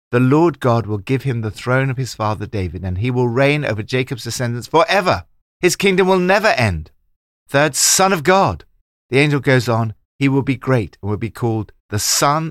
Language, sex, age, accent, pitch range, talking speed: English, male, 50-69, British, 90-130 Hz, 205 wpm